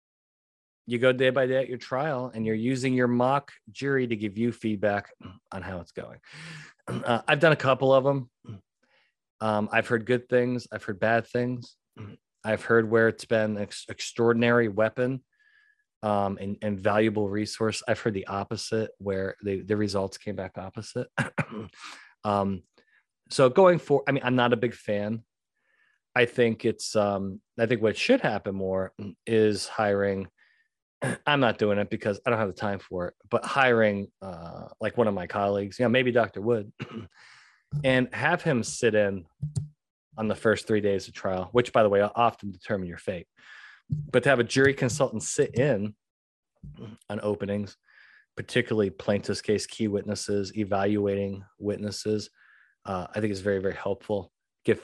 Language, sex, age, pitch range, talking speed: English, male, 30-49, 100-125 Hz, 170 wpm